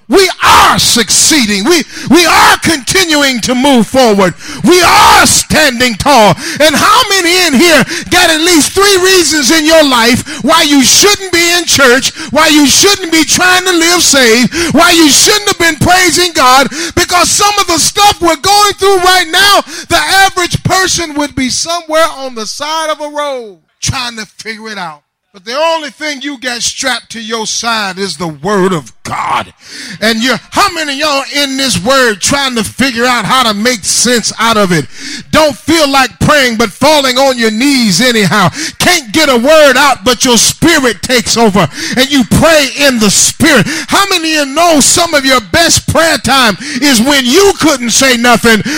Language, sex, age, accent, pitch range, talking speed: English, male, 30-49, American, 245-345 Hz, 190 wpm